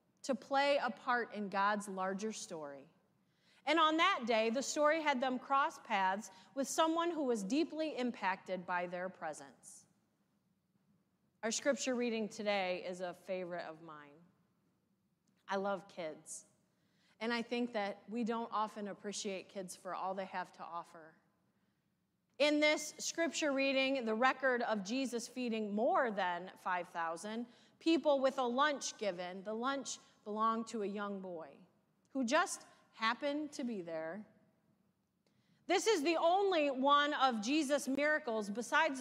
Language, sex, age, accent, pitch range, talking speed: English, female, 30-49, American, 190-270 Hz, 145 wpm